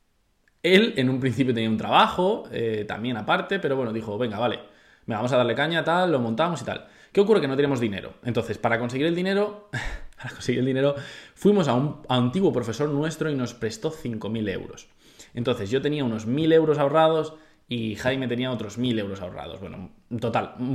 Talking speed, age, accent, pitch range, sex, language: 195 wpm, 20-39, Spanish, 115-150 Hz, male, Spanish